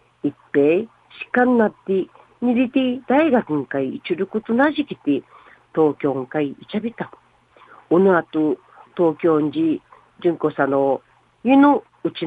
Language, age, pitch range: Japanese, 50-69, 165-240 Hz